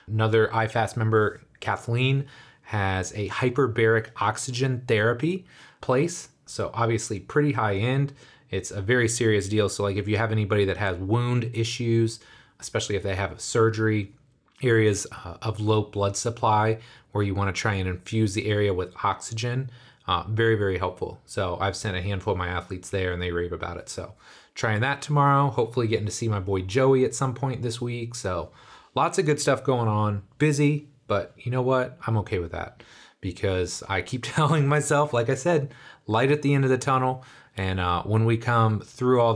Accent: American